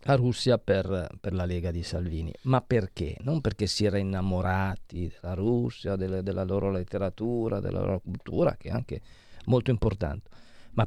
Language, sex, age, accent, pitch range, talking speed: Italian, male, 40-59, native, 95-125 Hz, 165 wpm